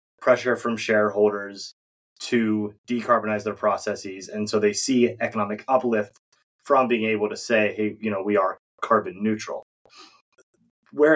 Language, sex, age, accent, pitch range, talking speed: English, male, 20-39, American, 105-120 Hz, 140 wpm